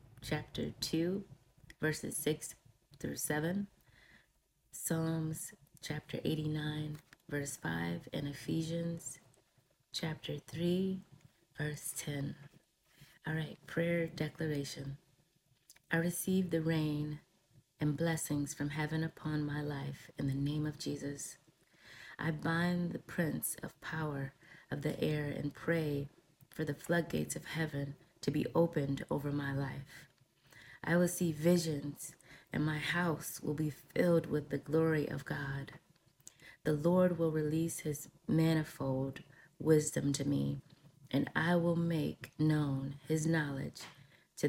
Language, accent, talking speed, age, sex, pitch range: English, American, 125 wpm, 30-49, female, 140-165 Hz